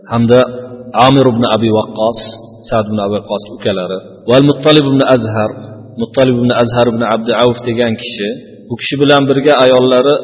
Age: 40-59